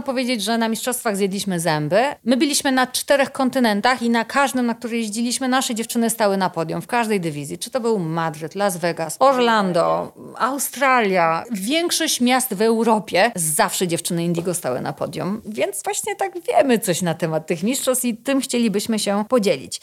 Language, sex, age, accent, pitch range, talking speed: Polish, female, 40-59, native, 175-250 Hz, 175 wpm